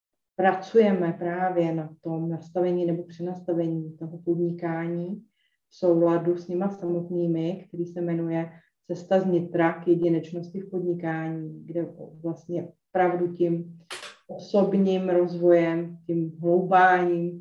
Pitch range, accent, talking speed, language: 165-180 Hz, native, 105 wpm, Czech